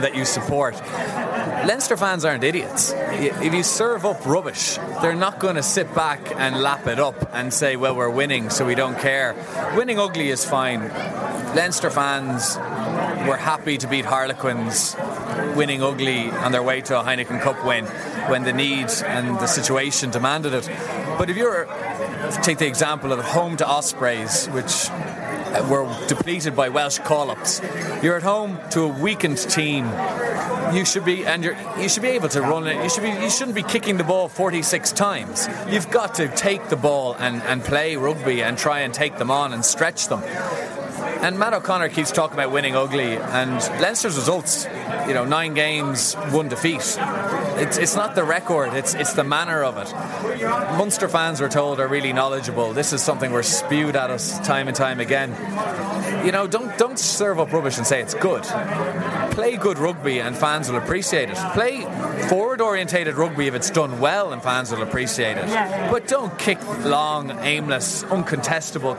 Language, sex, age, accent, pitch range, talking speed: English, male, 20-39, Irish, 135-190 Hz, 180 wpm